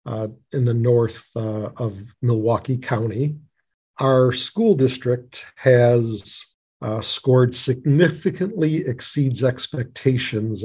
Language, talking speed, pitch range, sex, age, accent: English, 95 wpm, 110-130 Hz, male, 50-69, American